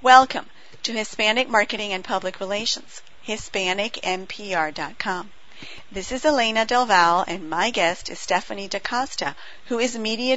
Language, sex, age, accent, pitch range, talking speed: English, female, 50-69, American, 185-245 Hz, 120 wpm